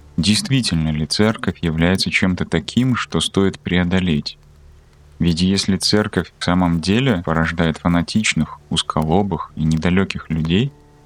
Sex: male